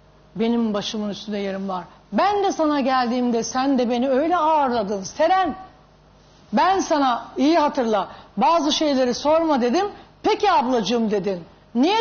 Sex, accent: female, native